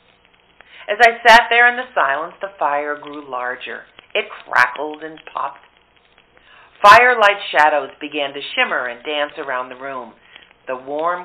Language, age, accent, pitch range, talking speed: English, 50-69, American, 135-185 Hz, 145 wpm